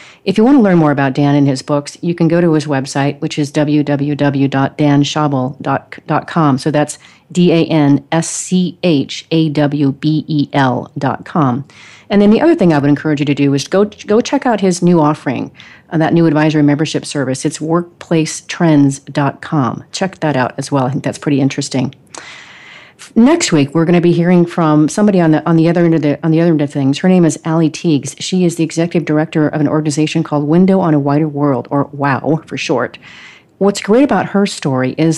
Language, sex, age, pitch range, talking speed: English, female, 40-59, 145-170 Hz, 190 wpm